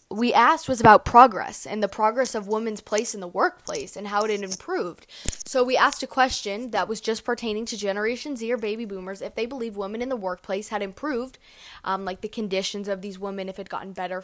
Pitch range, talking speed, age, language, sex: 200-260 Hz, 230 wpm, 10-29, English, female